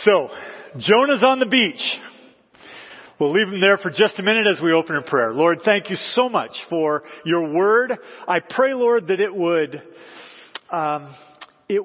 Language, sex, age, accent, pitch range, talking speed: English, male, 40-59, American, 150-210 Hz, 170 wpm